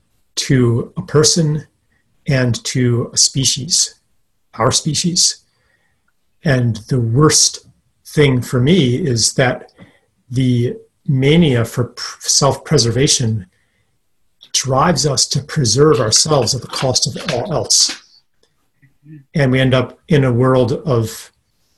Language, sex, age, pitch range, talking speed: English, male, 40-59, 120-155 Hz, 110 wpm